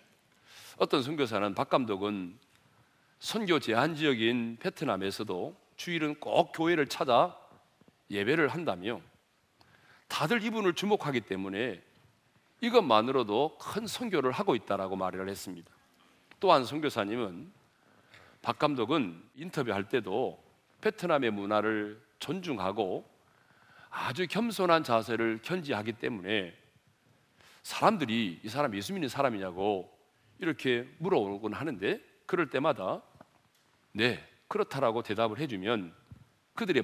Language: Korean